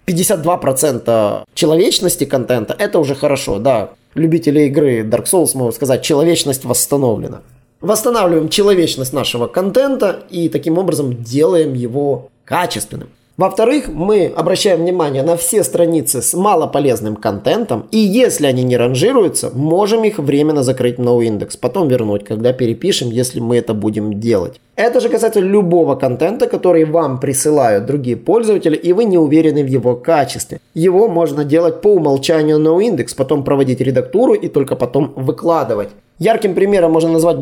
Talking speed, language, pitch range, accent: 140 wpm, Russian, 130-175 Hz, native